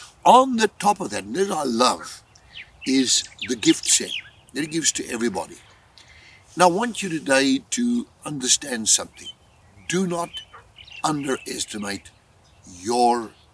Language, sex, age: English, male, 60-79